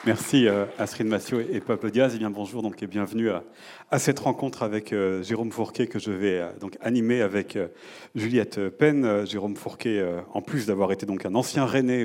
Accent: French